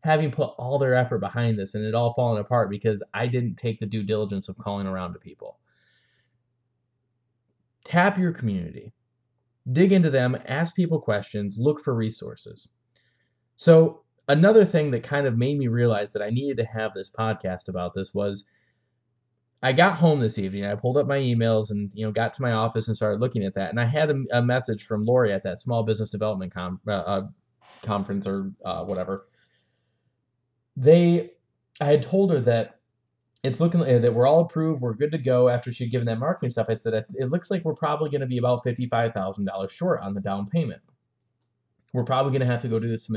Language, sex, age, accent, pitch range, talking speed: English, male, 20-39, American, 110-130 Hz, 200 wpm